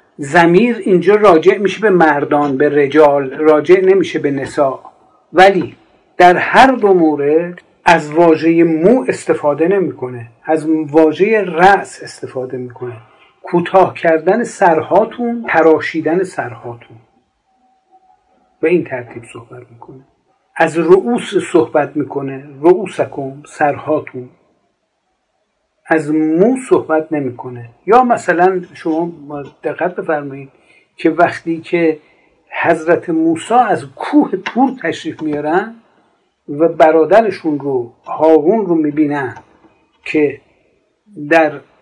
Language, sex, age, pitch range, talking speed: Persian, male, 50-69, 150-190 Hz, 100 wpm